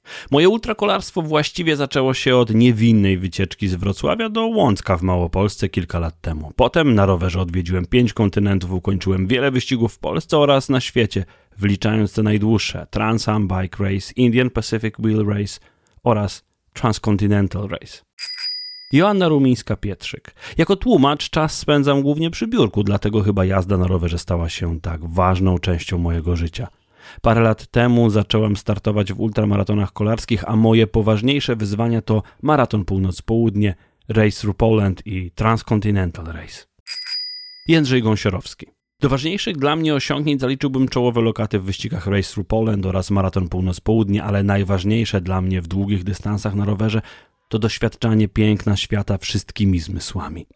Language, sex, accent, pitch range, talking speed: Polish, male, native, 95-120 Hz, 140 wpm